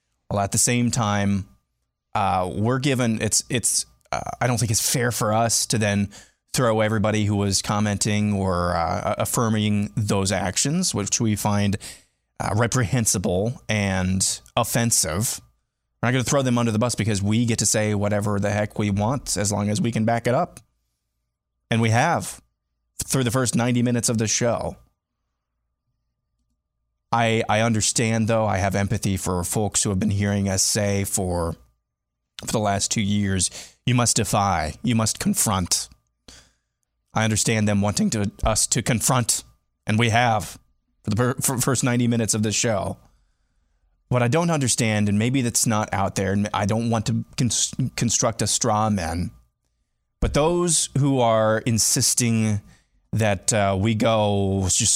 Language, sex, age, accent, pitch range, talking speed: English, male, 20-39, American, 95-120 Hz, 165 wpm